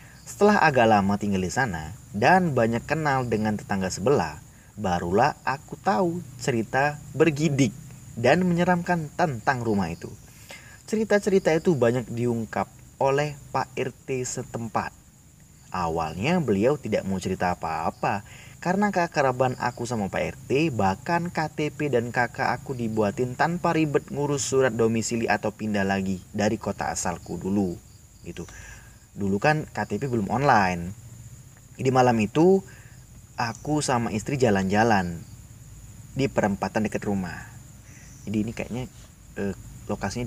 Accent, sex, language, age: native, male, Indonesian, 30-49